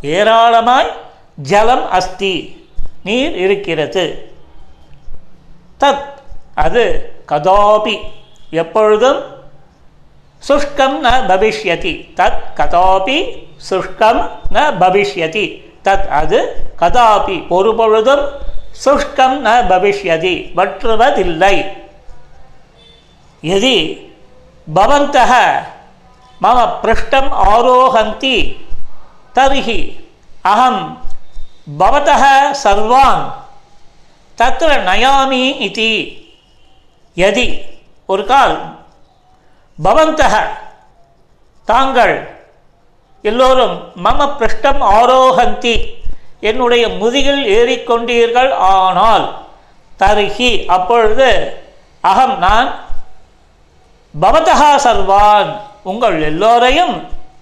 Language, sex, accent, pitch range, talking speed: Tamil, male, native, 200-275 Hz, 35 wpm